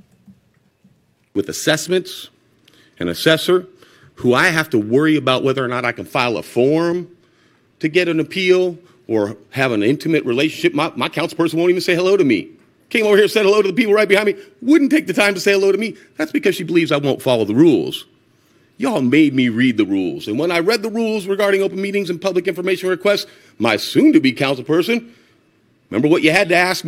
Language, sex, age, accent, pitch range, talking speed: English, male, 40-59, American, 145-205 Hz, 215 wpm